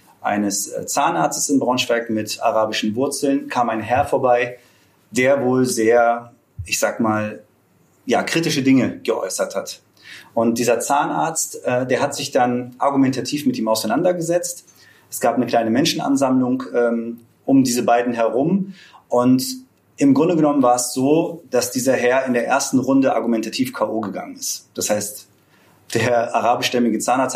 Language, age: German, 30-49